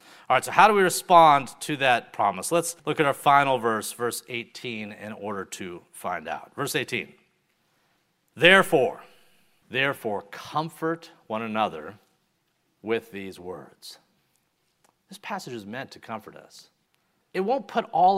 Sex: male